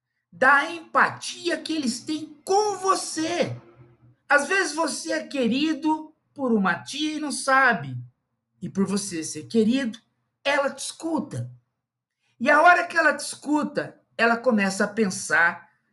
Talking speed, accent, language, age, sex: 140 wpm, Brazilian, Indonesian, 50-69, male